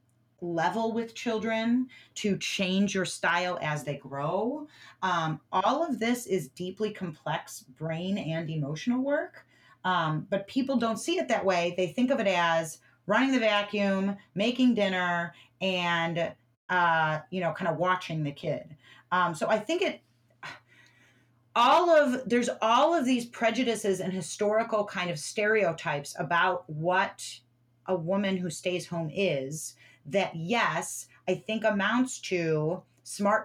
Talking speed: 145 wpm